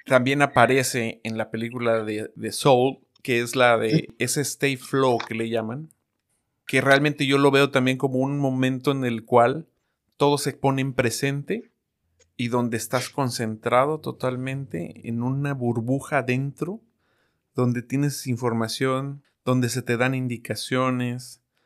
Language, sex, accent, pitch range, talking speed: Spanish, male, Mexican, 115-135 Hz, 145 wpm